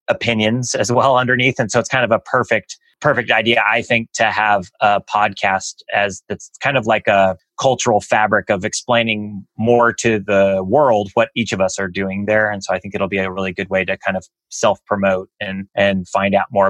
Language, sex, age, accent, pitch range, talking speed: English, male, 30-49, American, 100-115 Hz, 210 wpm